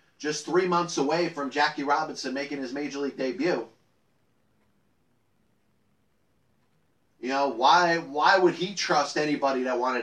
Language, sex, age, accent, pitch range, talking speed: English, male, 30-49, American, 150-185 Hz, 130 wpm